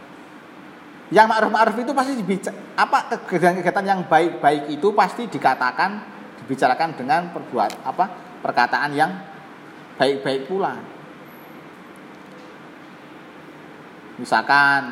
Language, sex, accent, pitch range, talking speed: Indonesian, male, native, 125-195 Hz, 80 wpm